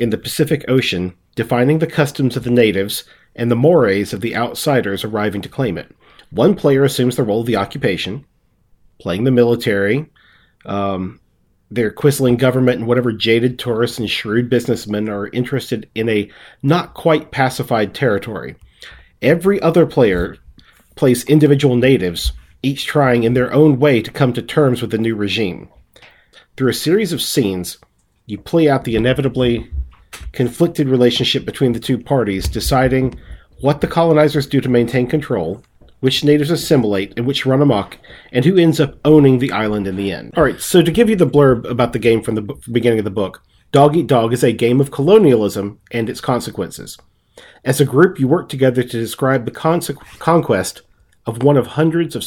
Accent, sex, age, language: American, male, 40-59, English